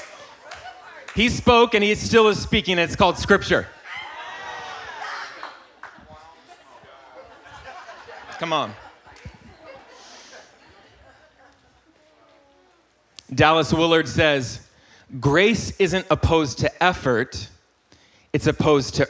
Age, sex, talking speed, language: 30-49, male, 70 wpm, English